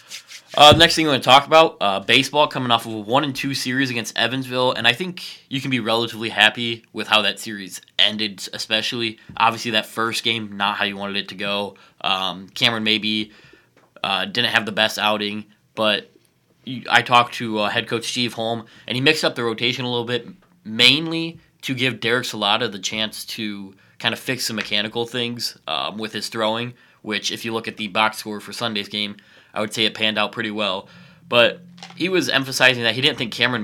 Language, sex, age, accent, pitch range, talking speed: English, male, 20-39, American, 105-120 Hz, 210 wpm